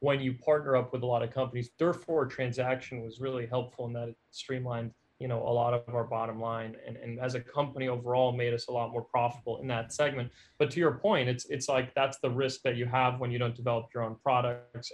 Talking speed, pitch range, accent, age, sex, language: 245 wpm, 120-130 Hz, American, 30-49, male, English